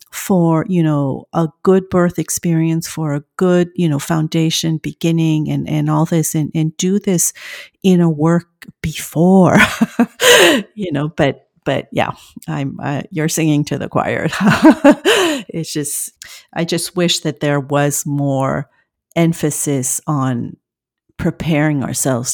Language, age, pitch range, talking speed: English, 50-69, 145-185 Hz, 135 wpm